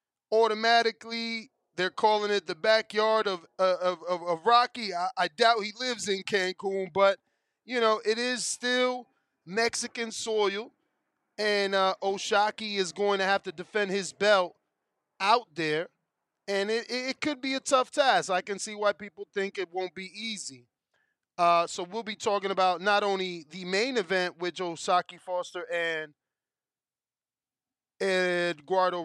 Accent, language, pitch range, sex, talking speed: American, English, 180-220 Hz, male, 150 wpm